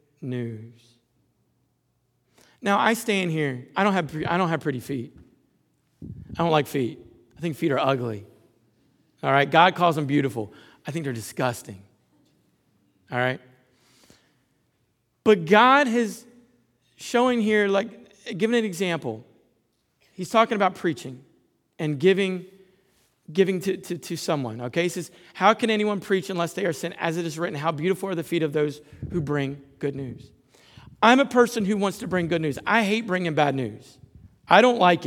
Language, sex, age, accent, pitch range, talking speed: English, male, 40-59, American, 135-205 Hz, 165 wpm